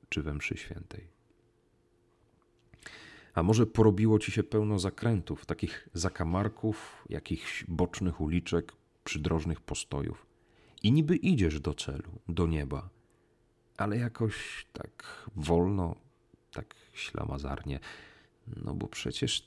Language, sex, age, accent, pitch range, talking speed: Polish, male, 40-59, native, 85-110 Hz, 100 wpm